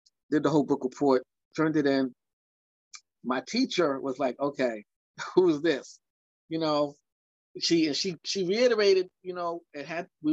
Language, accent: English, American